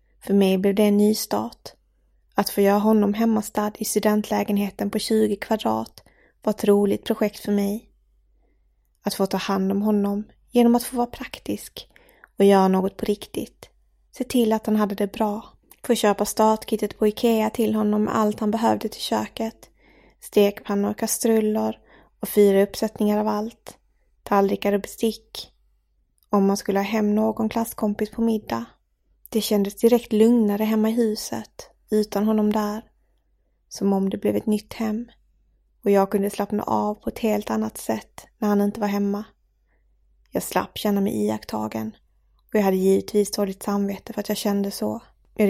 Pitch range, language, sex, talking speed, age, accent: 200-220 Hz, English, female, 170 wpm, 20-39, Swedish